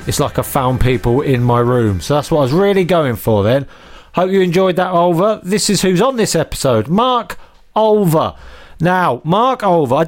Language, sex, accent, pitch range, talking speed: English, male, British, 125-175 Hz, 200 wpm